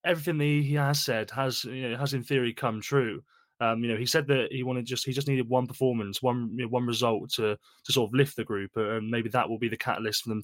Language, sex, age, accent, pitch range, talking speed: English, male, 20-39, British, 110-130 Hz, 275 wpm